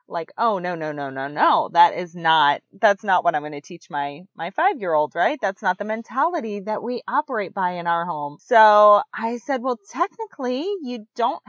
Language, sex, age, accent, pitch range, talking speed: English, female, 30-49, American, 160-235 Hz, 215 wpm